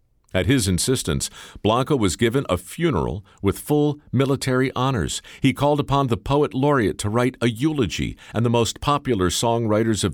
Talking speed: 165 wpm